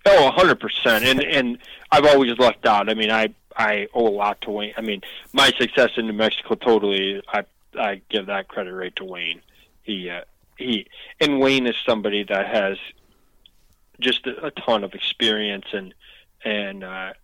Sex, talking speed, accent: male, 180 wpm, American